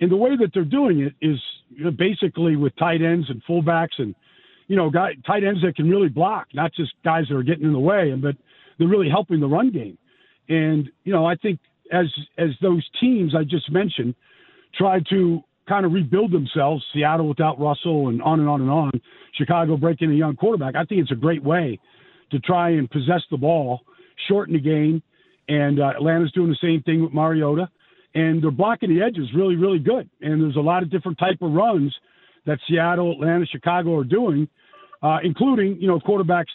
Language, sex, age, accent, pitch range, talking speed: English, male, 50-69, American, 140-175 Hz, 205 wpm